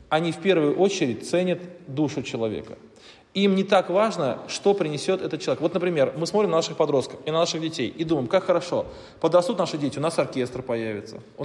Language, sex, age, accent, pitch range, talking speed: Russian, male, 20-39, native, 150-190 Hz, 200 wpm